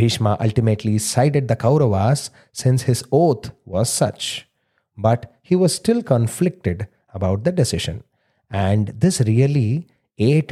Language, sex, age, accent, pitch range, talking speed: English, male, 30-49, Indian, 100-135 Hz, 125 wpm